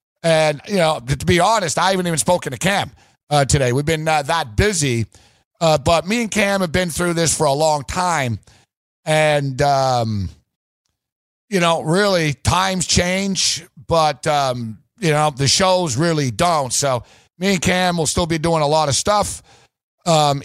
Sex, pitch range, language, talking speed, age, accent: male, 145-170 Hz, English, 175 wpm, 50-69, American